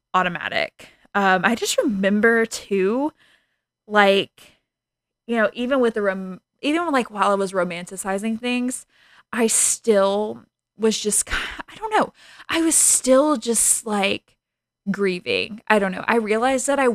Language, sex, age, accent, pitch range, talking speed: English, female, 20-39, American, 195-245 Hz, 140 wpm